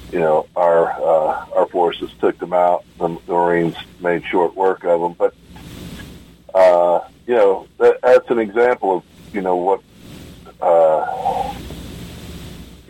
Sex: male